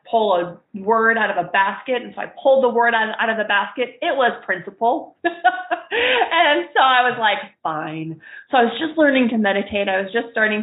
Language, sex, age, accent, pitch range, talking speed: English, female, 30-49, American, 195-245 Hz, 210 wpm